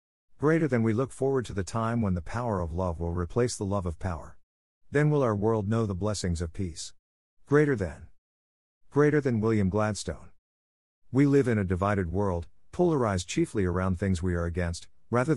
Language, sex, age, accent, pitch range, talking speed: English, male, 50-69, American, 90-115 Hz, 185 wpm